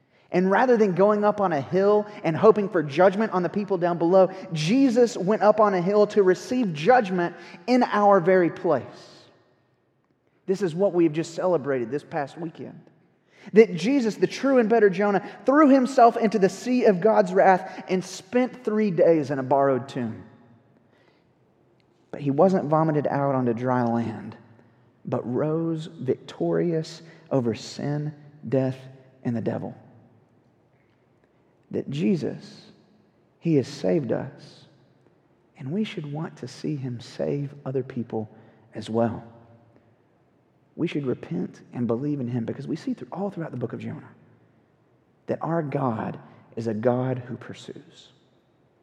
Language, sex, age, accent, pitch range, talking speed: English, male, 30-49, American, 120-190 Hz, 150 wpm